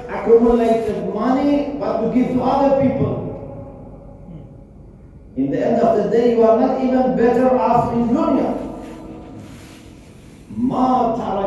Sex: male